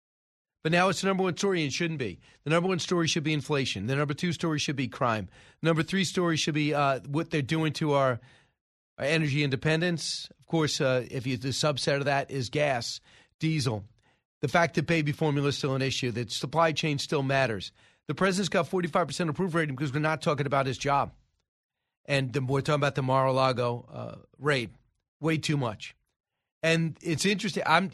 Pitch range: 135-175 Hz